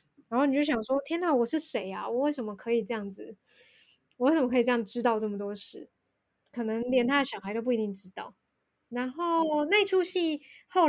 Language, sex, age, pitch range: Chinese, female, 10-29, 230-295 Hz